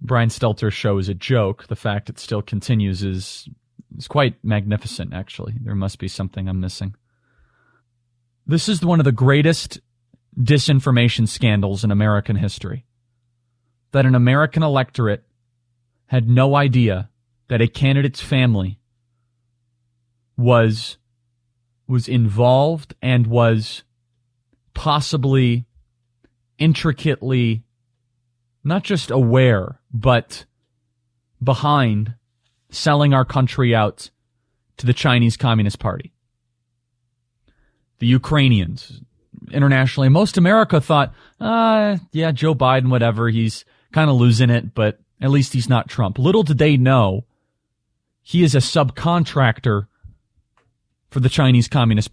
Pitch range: 115-135 Hz